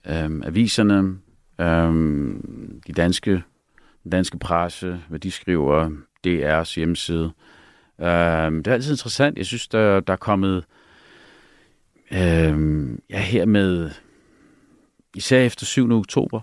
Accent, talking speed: native, 115 wpm